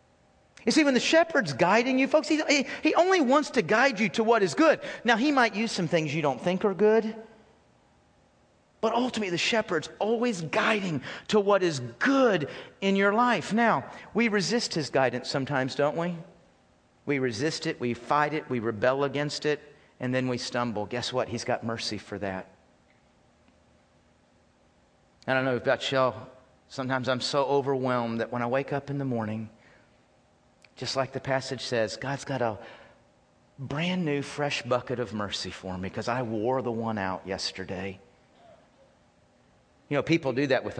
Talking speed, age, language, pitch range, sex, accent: 175 wpm, 40-59, English, 115-165 Hz, male, American